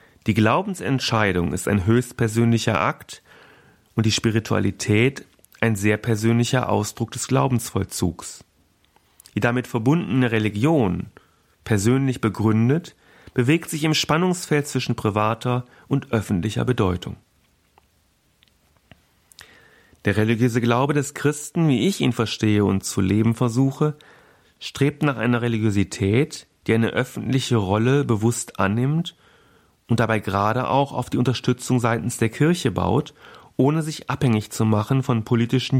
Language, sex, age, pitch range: German, male, 40-59, 110-135 Hz